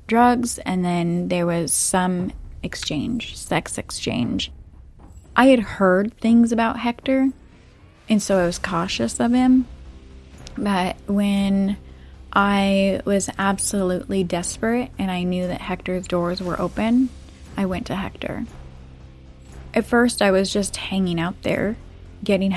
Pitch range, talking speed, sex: 165-200 Hz, 130 wpm, female